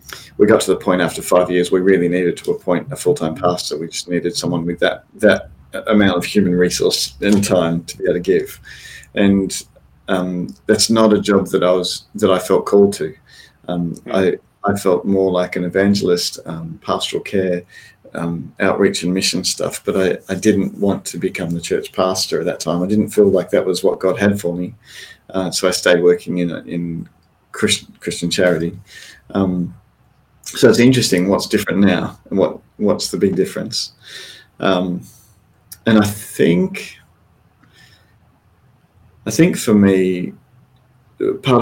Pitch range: 85-100 Hz